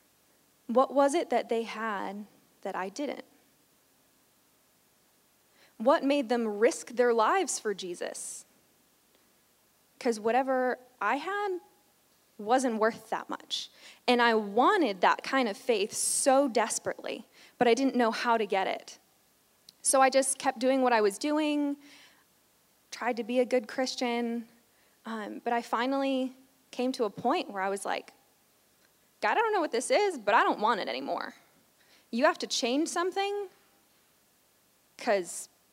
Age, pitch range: 20-39, 220-270 Hz